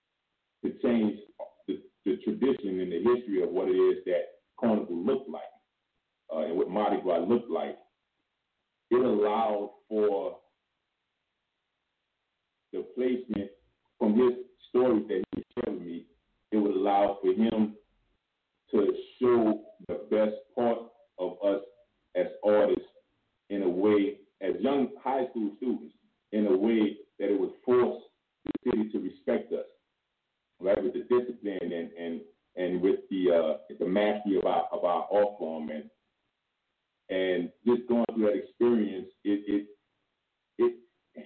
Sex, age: male, 40-59